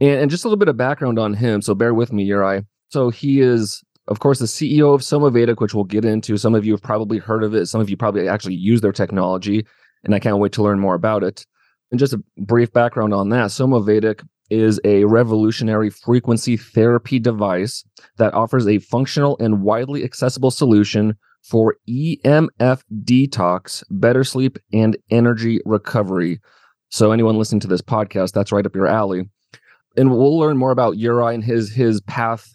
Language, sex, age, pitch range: English, male, 30-49, 105-130 Hz